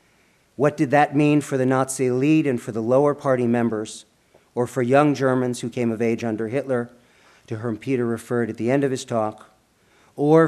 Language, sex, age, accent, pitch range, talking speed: English, male, 50-69, American, 115-145 Hz, 200 wpm